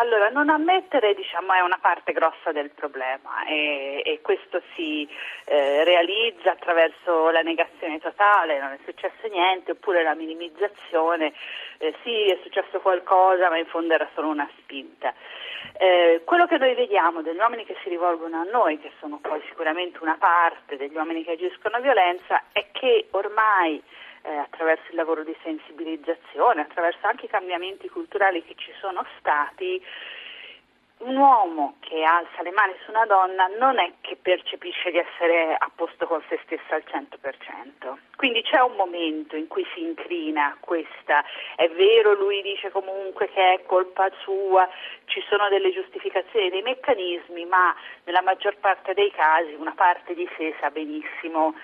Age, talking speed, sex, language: 40-59, 160 wpm, female, Italian